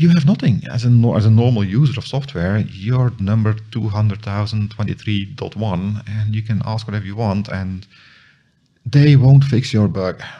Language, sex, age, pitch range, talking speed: English, male, 50-69, 90-125 Hz, 180 wpm